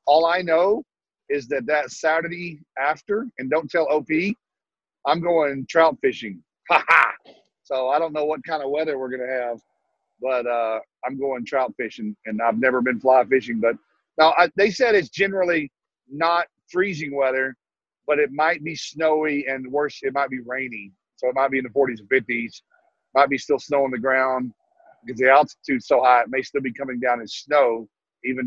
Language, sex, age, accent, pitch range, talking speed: English, male, 50-69, American, 130-160 Hz, 190 wpm